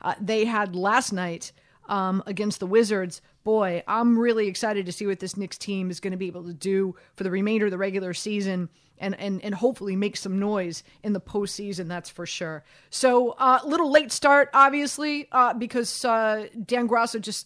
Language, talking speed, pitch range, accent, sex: English, 205 wpm, 200-245 Hz, American, female